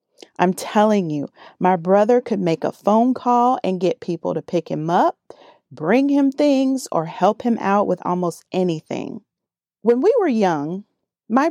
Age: 40-59